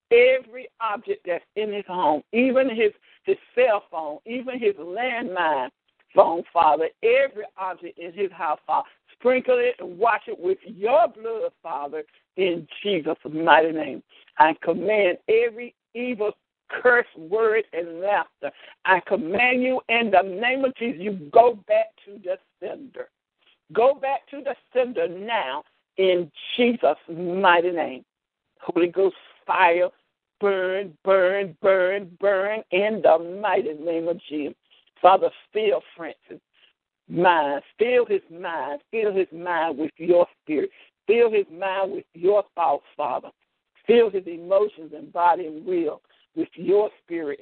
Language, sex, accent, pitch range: English, male, American, 175-290 Hz